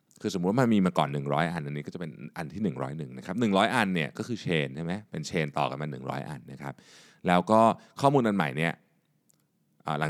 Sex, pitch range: male, 70-100 Hz